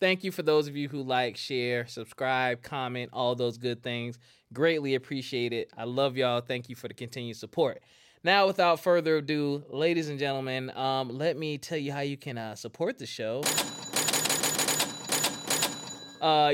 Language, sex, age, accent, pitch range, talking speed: English, male, 20-39, American, 125-150 Hz, 170 wpm